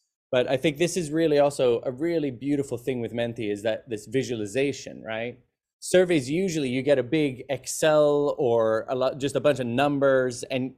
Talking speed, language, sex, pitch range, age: 180 wpm, English, male, 125-165 Hz, 20-39